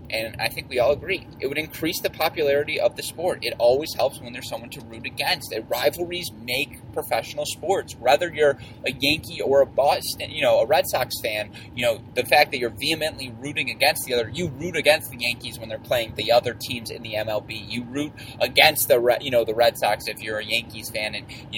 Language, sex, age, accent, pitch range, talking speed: English, male, 20-39, American, 115-140 Hz, 225 wpm